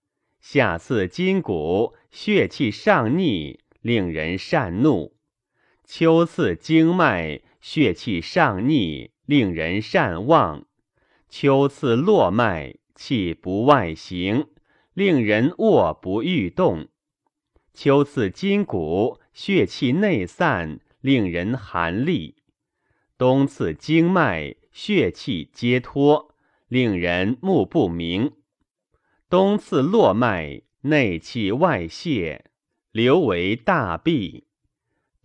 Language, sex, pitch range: Chinese, male, 95-155 Hz